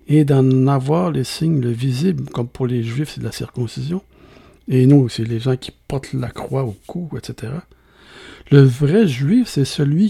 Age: 60-79